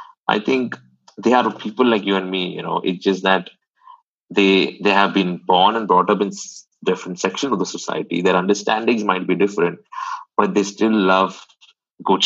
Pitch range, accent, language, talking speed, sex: 95-125 Hz, Indian, English, 190 wpm, male